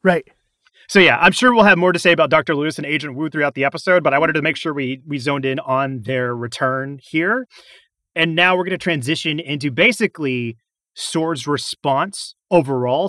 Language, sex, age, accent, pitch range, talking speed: English, male, 30-49, American, 140-180 Hz, 200 wpm